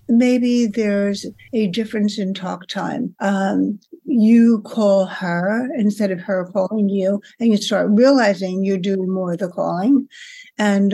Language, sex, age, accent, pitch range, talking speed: English, female, 60-79, American, 195-230 Hz, 150 wpm